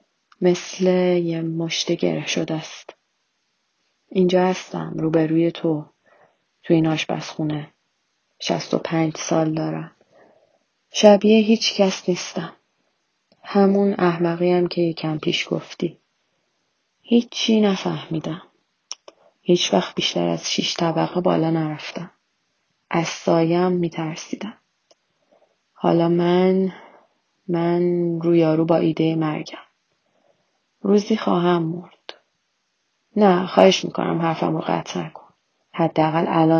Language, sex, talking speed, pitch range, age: Persian, female, 100 wpm, 165-190 Hz, 30-49